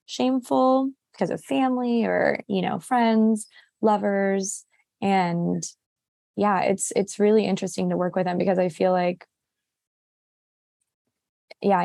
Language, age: English, 20-39